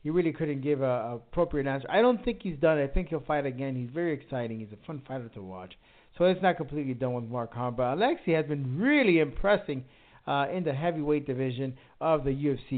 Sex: male